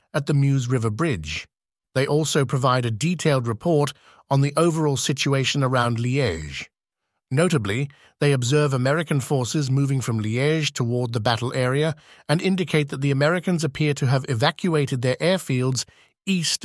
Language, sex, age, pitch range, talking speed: English, male, 50-69, 125-155 Hz, 150 wpm